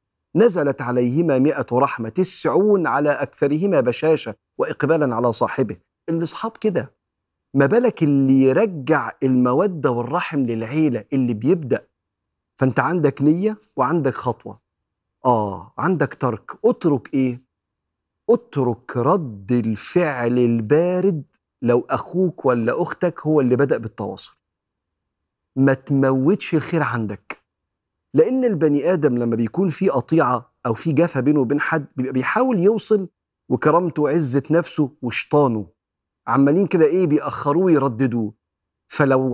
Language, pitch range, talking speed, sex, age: Arabic, 120-165 Hz, 110 wpm, male, 40-59